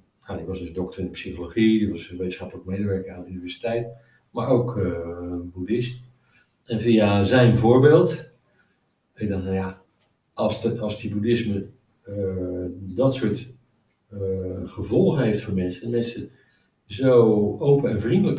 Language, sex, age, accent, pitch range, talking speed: Dutch, male, 50-69, Dutch, 100-125 Hz, 150 wpm